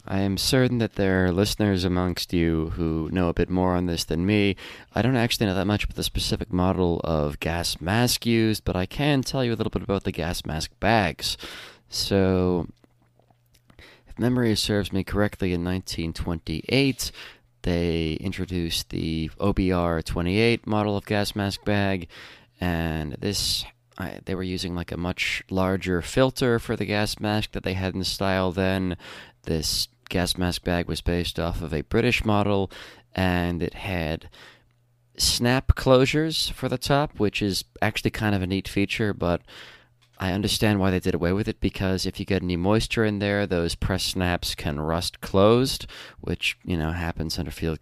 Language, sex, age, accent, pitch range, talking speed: English, male, 20-39, American, 85-105 Hz, 175 wpm